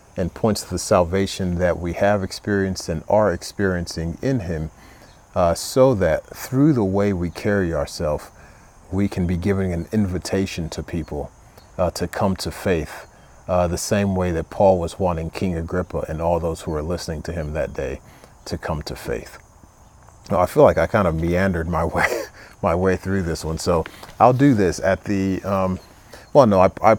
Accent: American